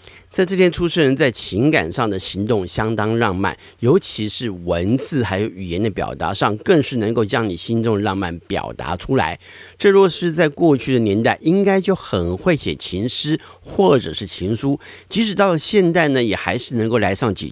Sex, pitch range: male, 95-140 Hz